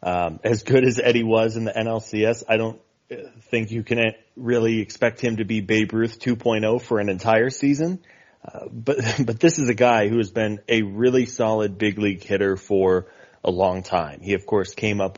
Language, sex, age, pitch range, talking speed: English, male, 30-49, 105-120 Hz, 200 wpm